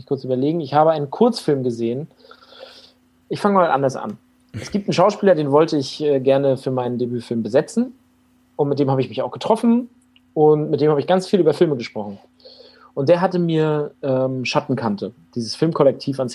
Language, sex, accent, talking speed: German, male, German, 185 wpm